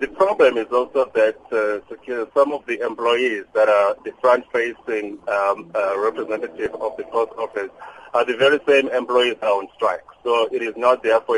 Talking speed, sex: 185 wpm, male